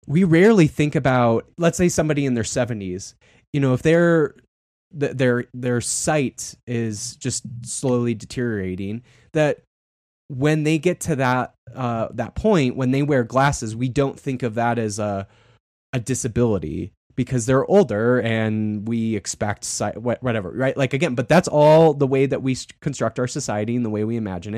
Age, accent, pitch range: 20-39, American, 110-140 Hz